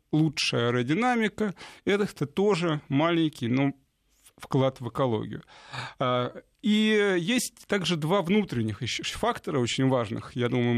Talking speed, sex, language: 110 wpm, male, Russian